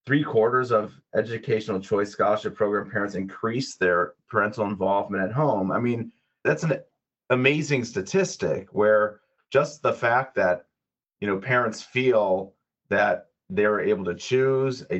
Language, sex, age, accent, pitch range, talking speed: English, male, 30-49, American, 100-135 Hz, 140 wpm